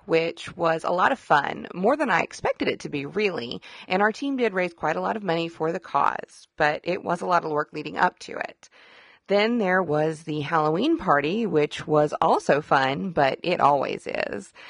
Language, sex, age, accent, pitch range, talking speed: English, female, 30-49, American, 155-225 Hz, 210 wpm